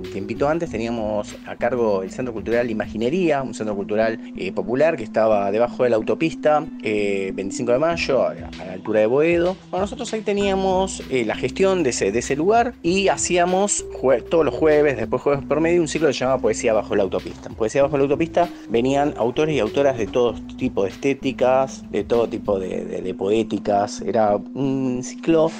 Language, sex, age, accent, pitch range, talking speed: Spanish, male, 30-49, Argentinian, 120-190 Hz, 190 wpm